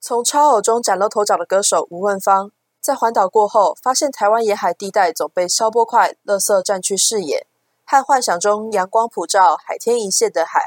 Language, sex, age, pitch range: Chinese, female, 20-39, 185-240 Hz